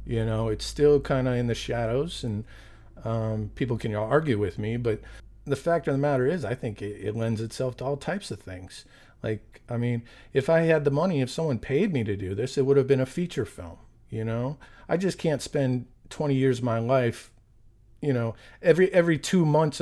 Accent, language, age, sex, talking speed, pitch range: American, English, 40-59, male, 220 wpm, 110-135 Hz